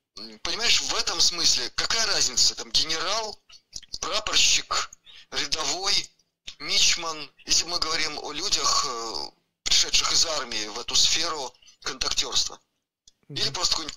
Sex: male